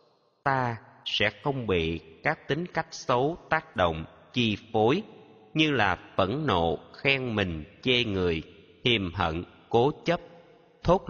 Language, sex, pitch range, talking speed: Vietnamese, male, 95-145 Hz, 135 wpm